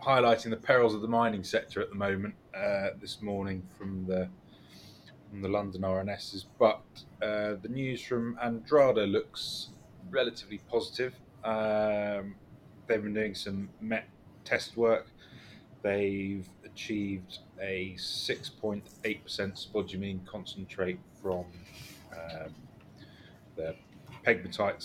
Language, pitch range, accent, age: English, 95-105 Hz, British, 30-49